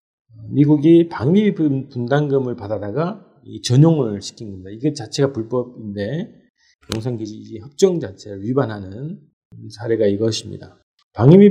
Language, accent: Korean, native